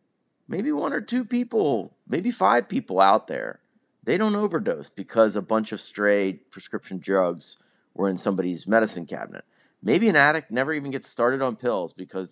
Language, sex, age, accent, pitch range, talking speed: English, male, 30-49, American, 100-140 Hz, 170 wpm